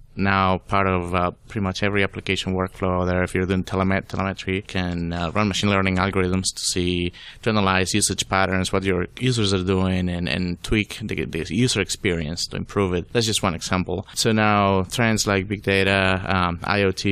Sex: male